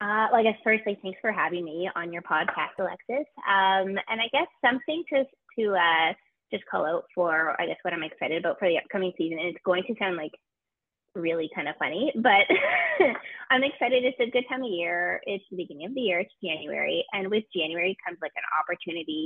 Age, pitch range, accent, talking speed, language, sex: 20-39, 170-230 Hz, American, 215 wpm, English, female